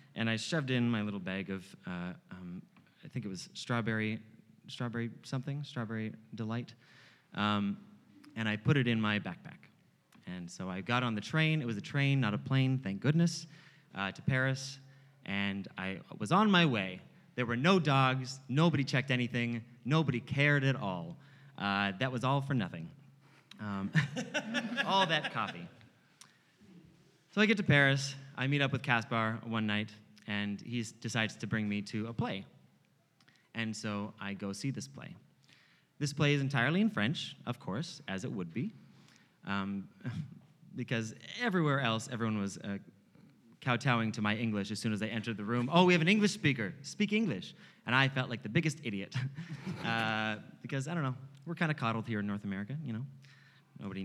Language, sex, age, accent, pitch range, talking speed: English, male, 30-49, American, 110-145 Hz, 180 wpm